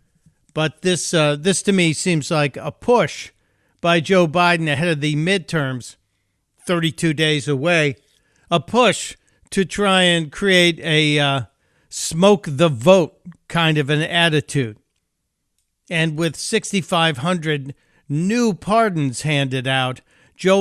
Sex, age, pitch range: male, 50-69, 145-180 Hz